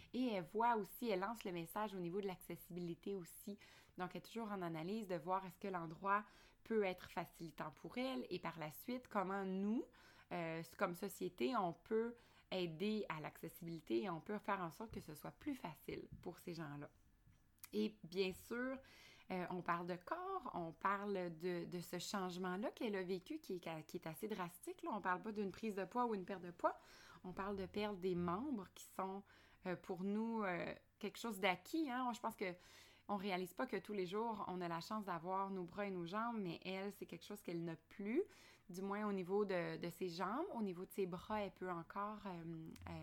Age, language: 20-39, French